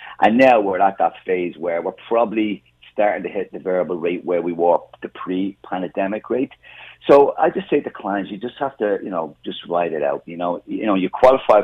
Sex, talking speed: male, 230 wpm